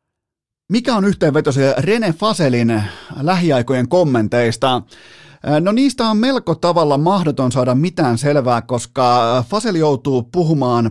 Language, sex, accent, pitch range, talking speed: Finnish, male, native, 120-160 Hz, 110 wpm